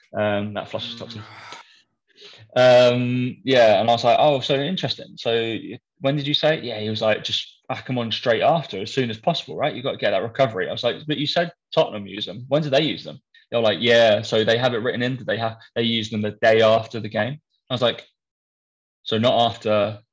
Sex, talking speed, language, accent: male, 240 wpm, English, British